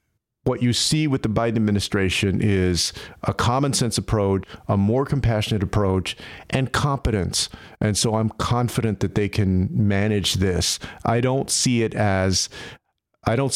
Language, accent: English, American